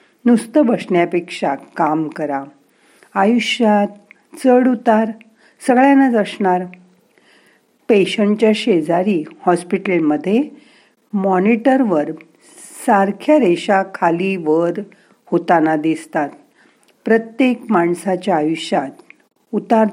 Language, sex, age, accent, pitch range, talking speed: Marathi, female, 50-69, native, 175-230 Hz, 70 wpm